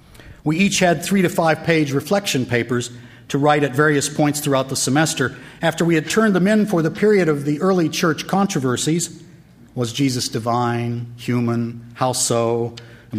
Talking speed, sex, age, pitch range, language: 160 wpm, male, 50-69, 130-195 Hz, English